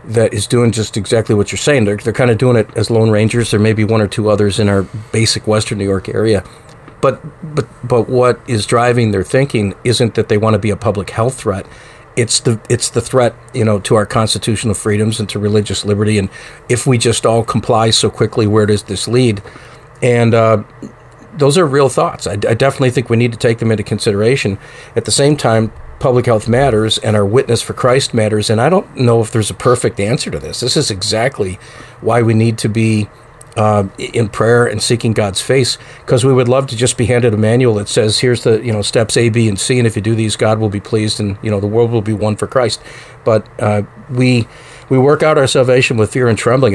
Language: English